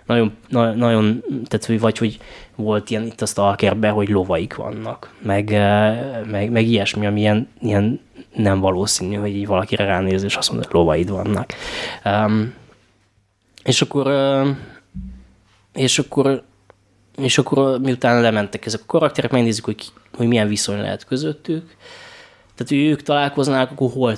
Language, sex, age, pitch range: Hungarian, male, 10-29, 105-125 Hz